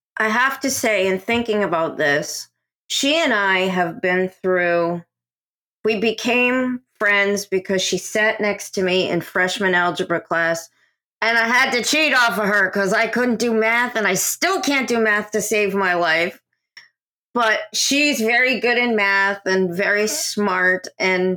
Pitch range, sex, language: 185-240 Hz, female, Thai